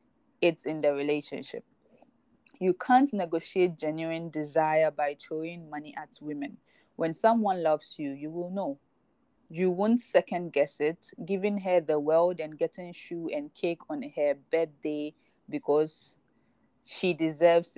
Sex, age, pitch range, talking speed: female, 20-39, 150-190 Hz, 140 wpm